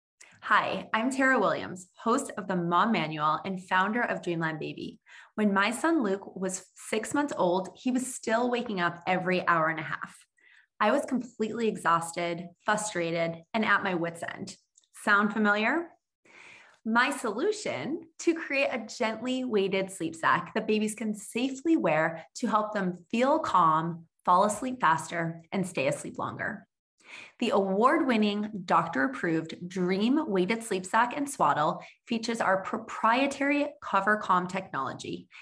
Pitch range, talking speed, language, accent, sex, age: 180-240 Hz, 145 wpm, English, American, female, 20-39